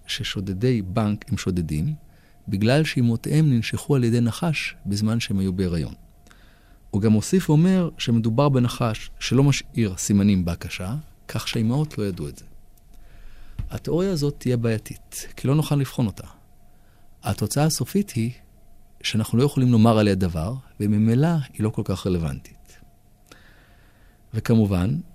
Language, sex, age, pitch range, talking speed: Hebrew, male, 40-59, 100-135 Hz, 130 wpm